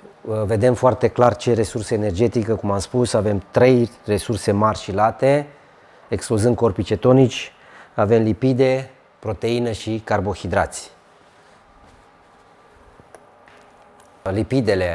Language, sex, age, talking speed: Romanian, male, 30-49, 95 wpm